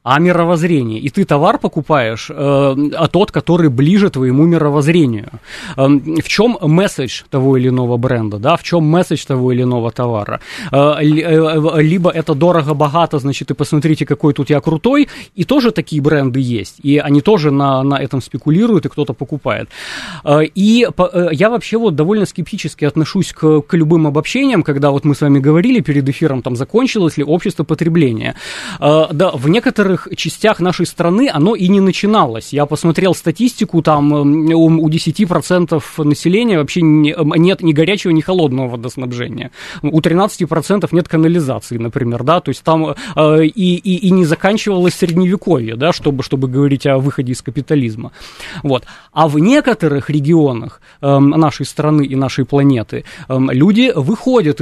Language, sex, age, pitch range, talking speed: Russian, male, 20-39, 140-180 Hz, 160 wpm